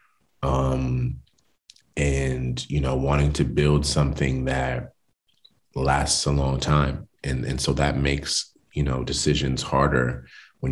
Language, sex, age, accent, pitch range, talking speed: English, male, 30-49, American, 65-75 Hz, 130 wpm